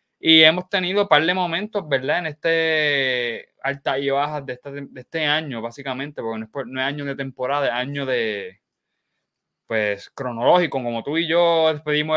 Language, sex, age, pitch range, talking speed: Spanish, male, 20-39, 125-155 Hz, 180 wpm